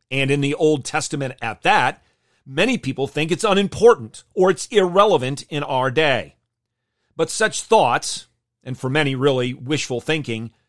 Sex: male